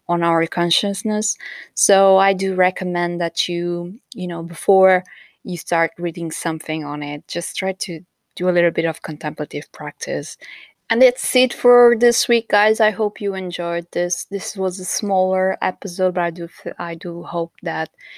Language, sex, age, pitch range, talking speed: English, female, 20-39, 170-195 Hz, 170 wpm